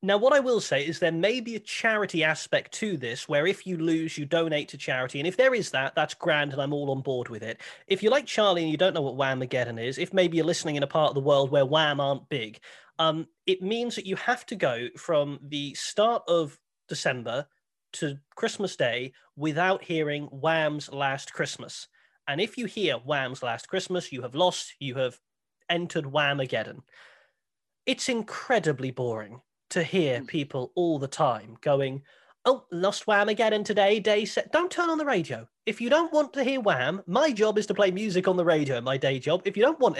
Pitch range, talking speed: 145-210 Hz, 210 wpm